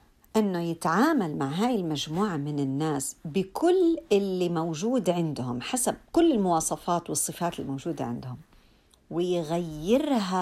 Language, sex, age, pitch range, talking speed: Arabic, female, 50-69, 160-220 Hz, 105 wpm